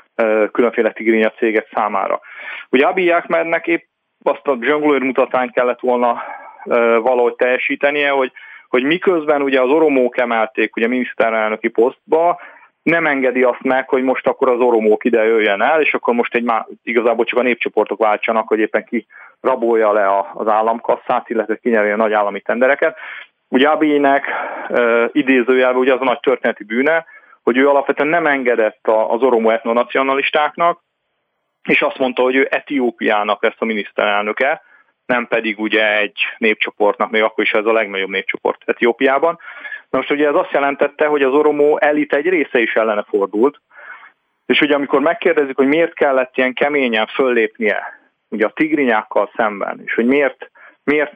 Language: Hungarian